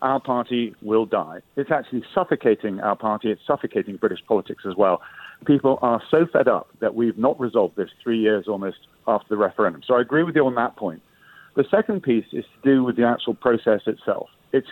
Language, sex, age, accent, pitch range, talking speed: English, male, 50-69, British, 115-145 Hz, 210 wpm